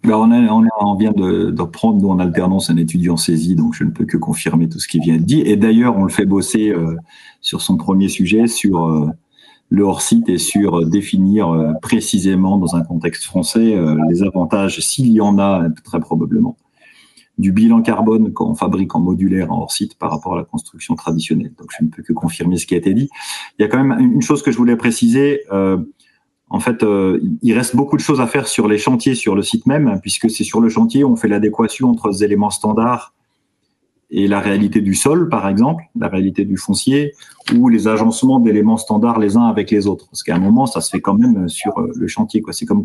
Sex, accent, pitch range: male, French, 95-130 Hz